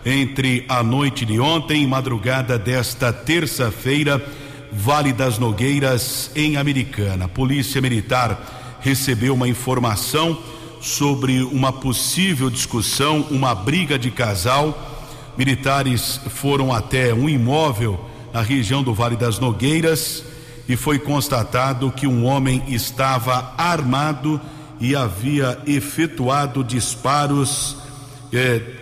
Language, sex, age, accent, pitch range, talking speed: Portuguese, male, 60-79, Brazilian, 125-145 Hz, 110 wpm